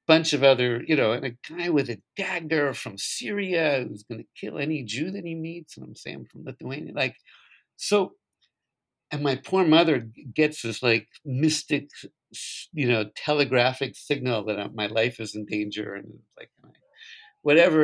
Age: 50-69